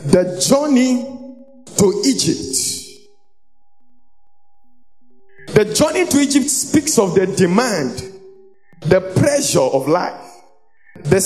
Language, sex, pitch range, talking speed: English, male, 210-295 Hz, 90 wpm